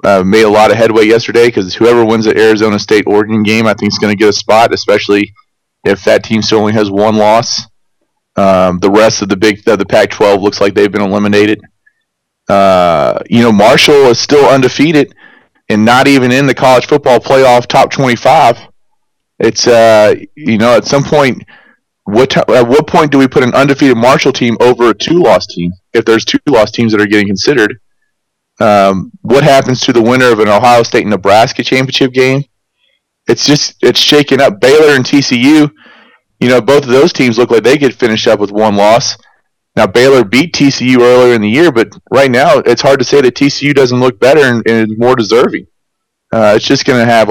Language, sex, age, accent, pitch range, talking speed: English, male, 30-49, American, 105-130 Hz, 200 wpm